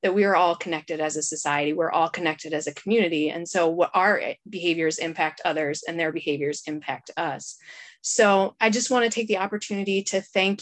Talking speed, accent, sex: 205 wpm, American, female